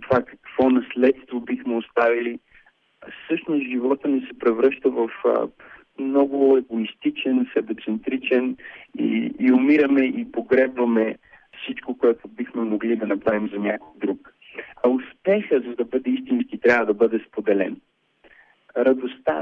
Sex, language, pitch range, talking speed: male, Bulgarian, 110-140 Hz, 120 wpm